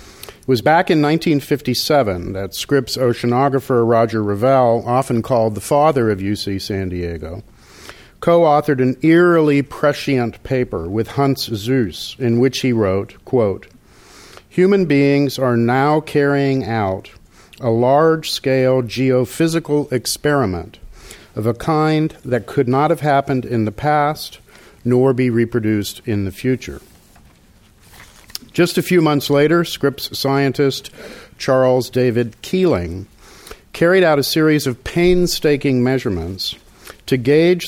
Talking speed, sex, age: 125 wpm, male, 50-69